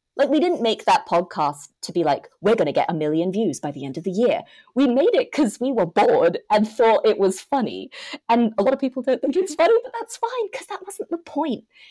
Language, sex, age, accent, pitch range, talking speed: English, female, 30-49, British, 160-265 Hz, 255 wpm